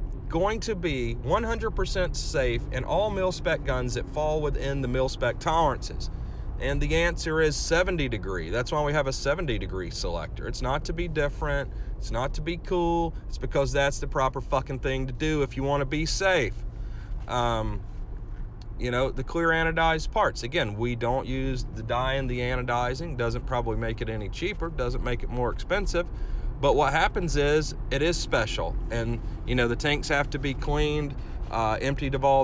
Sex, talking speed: male, 190 wpm